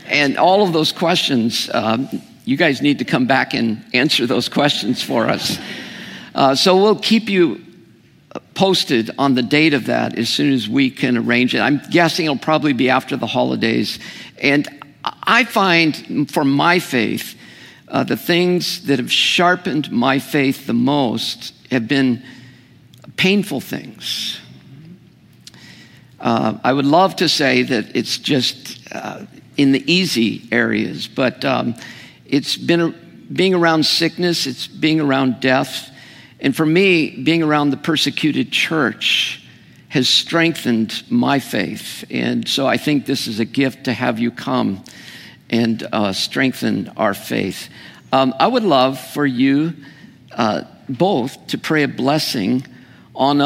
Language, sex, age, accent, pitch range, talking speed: English, male, 50-69, American, 130-165 Hz, 145 wpm